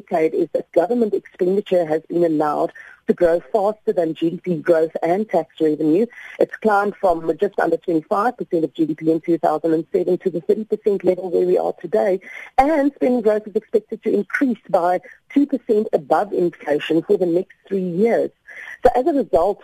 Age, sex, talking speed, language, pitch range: 50-69, female, 165 wpm, English, 170-230 Hz